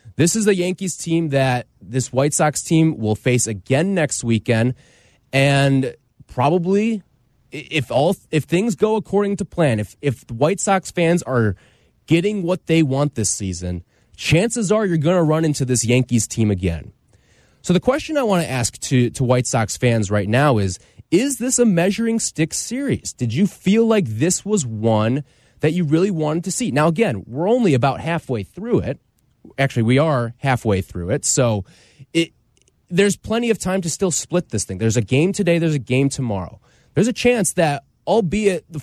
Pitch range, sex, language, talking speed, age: 120-180 Hz, male, English, 185 wpm, 20-39